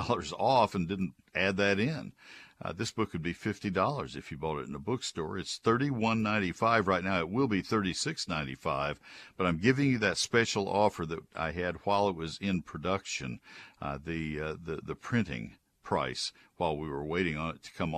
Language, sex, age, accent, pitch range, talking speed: English, male, 60-79, American, 90-115 Hz, 215 wpm